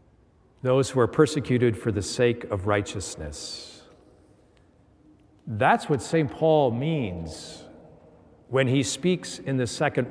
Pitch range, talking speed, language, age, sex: 115-155 Hz, 120 wpm, English, 50-69, male